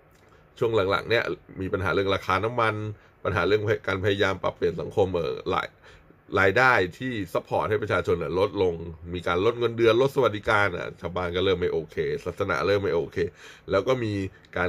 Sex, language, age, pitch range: male, Thai, 20-39, 90-145 Hz